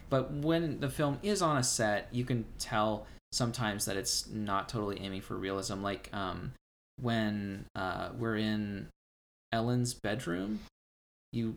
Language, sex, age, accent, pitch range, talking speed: English, male, 20-39, American, 95-120 Hz, 145 wpm